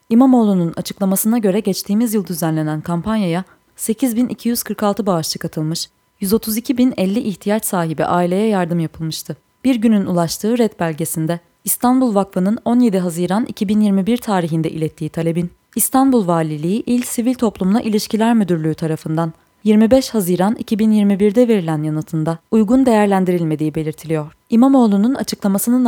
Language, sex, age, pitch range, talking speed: Turkish, female, 20-39, 170-225 Hz, 110 wpm